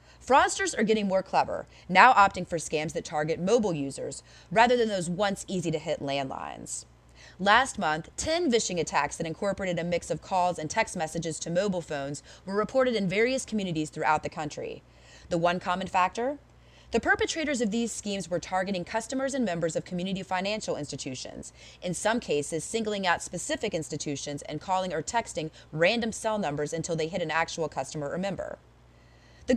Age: 30-49